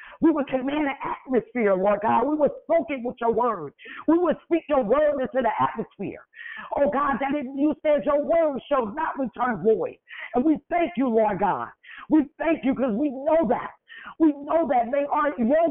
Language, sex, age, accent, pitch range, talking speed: English, female, 50-69, American, 215-280 Hz, 205 wpm